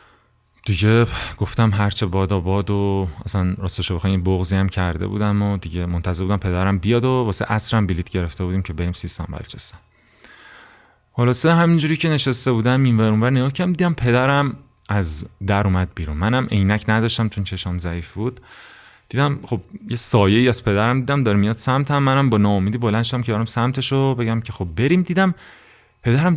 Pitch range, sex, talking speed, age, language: 90-115 Hz, male, 185 wpm, 30-49, Persian